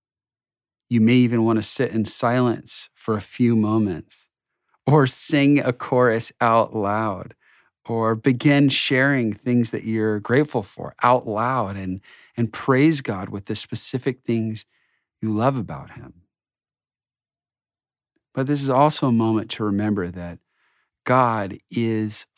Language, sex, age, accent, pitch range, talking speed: English, male, 40-59, American, 100-125 Hz, 135 wpm